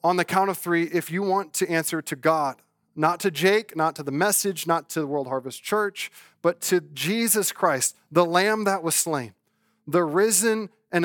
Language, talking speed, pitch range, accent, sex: English, 200 wpm, 140-170 Hz, American, male